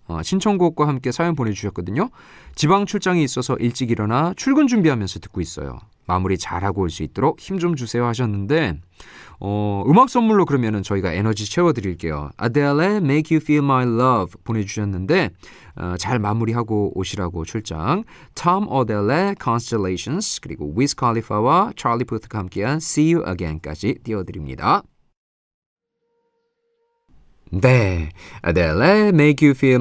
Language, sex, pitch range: Korean, male, 100-155 Hz